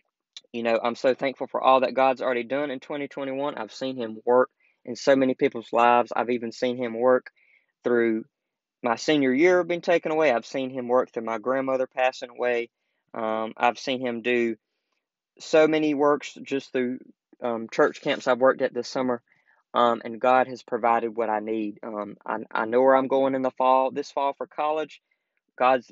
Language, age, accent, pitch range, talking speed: English, 20-39, American, 120-140 Hz, 195 wpm